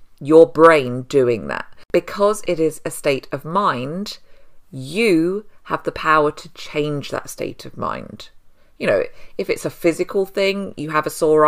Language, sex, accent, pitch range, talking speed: English, female, British, 140-185 Hz, 165 wpm